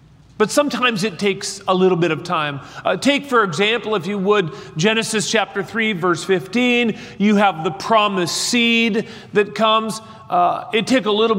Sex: male